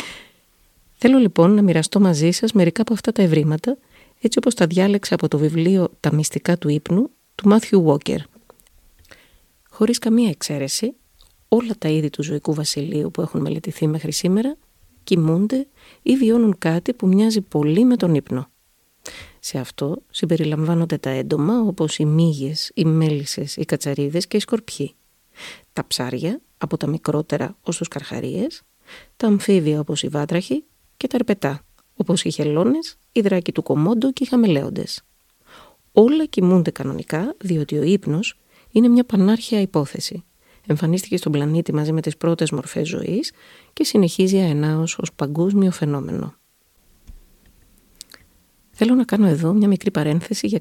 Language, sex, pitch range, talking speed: Greek, female, 155-210 Hz, 140 wpm